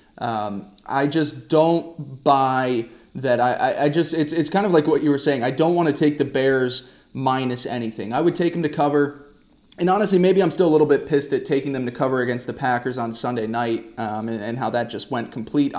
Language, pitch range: English, 120-145 Hz